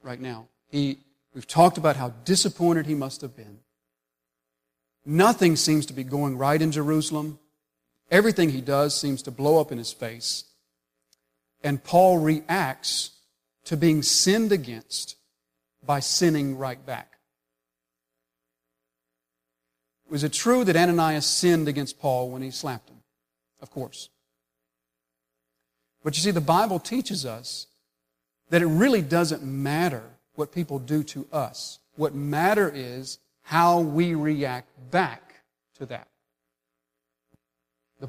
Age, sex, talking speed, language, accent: 40-59, male, 130 wpm, English, American